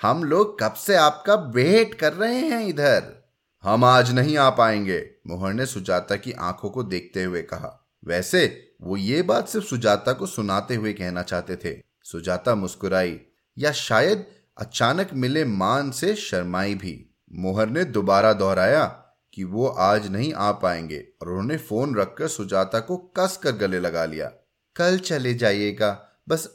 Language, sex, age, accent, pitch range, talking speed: Hindi, male, 30-49, native, 100-150 Hz, 160 wpm